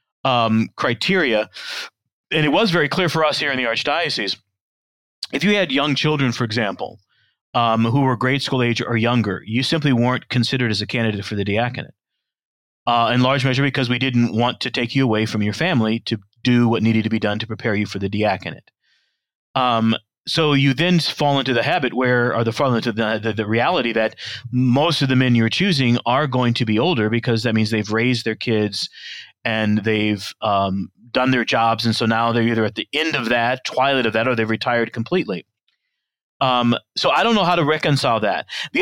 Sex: male